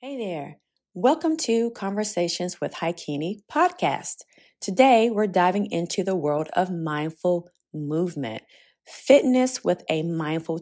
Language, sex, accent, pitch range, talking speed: English, female, American, 165-240 Hz, 120 wpm